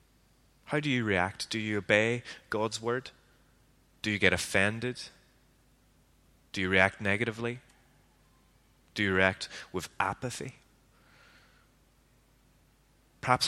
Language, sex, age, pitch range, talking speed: English, male, 20-39, 90-105 Hz, 100 wpm